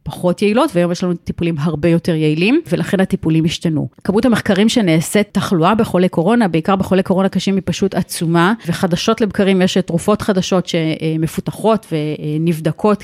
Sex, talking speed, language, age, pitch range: female, 145 wpm, Hebrew, 30-49, 170-200 Hz